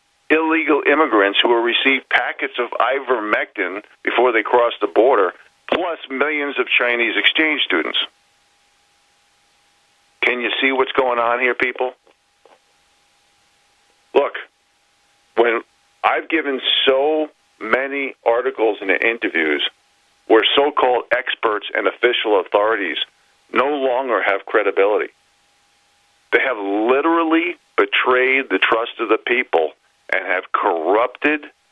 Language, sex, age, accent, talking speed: English, male, 50-69, American, 110 wpm